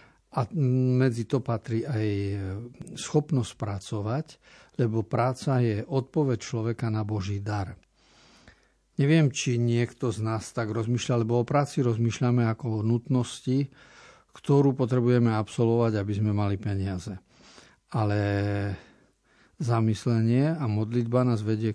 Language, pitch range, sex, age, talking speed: Slovak, 110-125 Hz, male, 50-69, 115 wpm